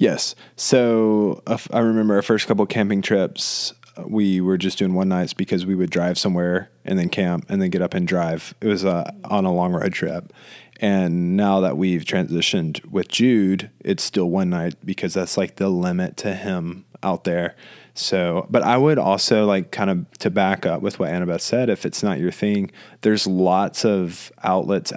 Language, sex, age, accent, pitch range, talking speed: English, male, 20-39, American, 90-105 Hz, 195 wpm